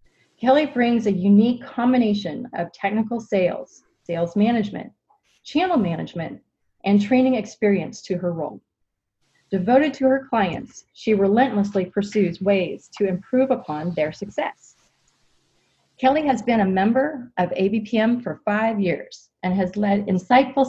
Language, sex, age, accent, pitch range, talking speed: English, female, 30-49, American, 195-255 Hz, 130 wpm